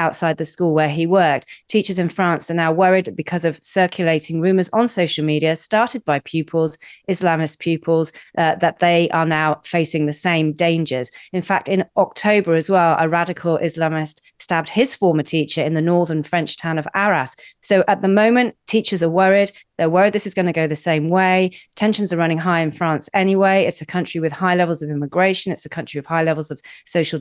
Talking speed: 205 wpm